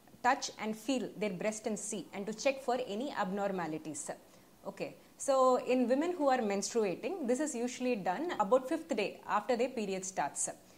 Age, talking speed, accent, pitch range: 20-39, 175 wpm, Indian, 205-265 Hz